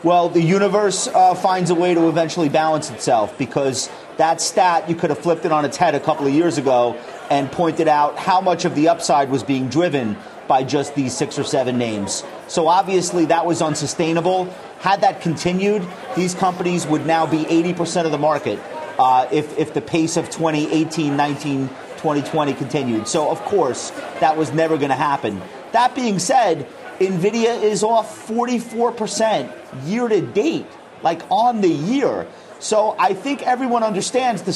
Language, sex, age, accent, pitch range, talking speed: English, male, 30-49, American, 150-190 Hz, 175 wpm